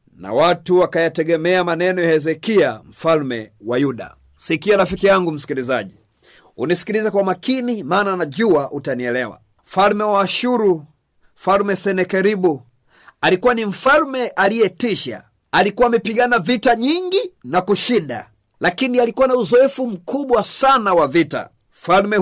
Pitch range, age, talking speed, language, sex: 160-210 Hz, 50-69, 115 wpm, Swahili, male